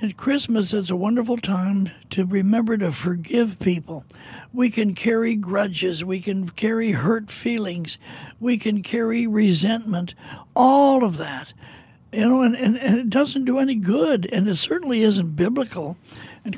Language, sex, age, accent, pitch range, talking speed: English, male, 60-79, American, 175-230 Hz, 155 wpm